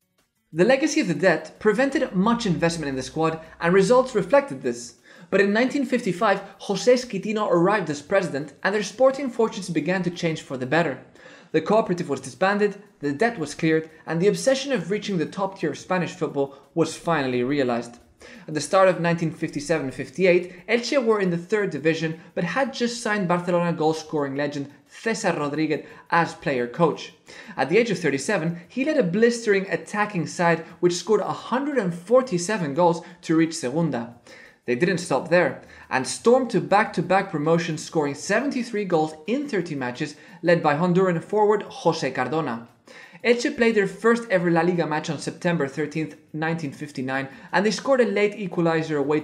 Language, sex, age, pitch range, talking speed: English, male, 20-39, 155-205 Hz, 165 wpm